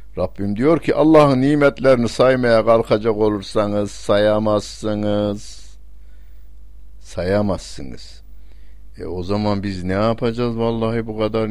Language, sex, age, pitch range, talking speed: Turkish, male, 60-79, 90-115 Hz, 100 wpm